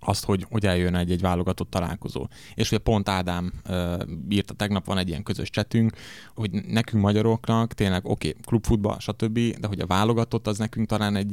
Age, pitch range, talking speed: 20-39, 95-110 Hz, 185 wpm